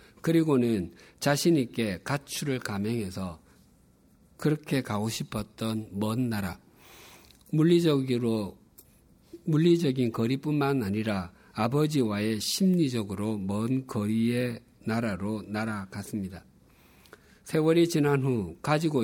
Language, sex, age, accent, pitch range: Korean, male, 50-69, native, 105-140 Hz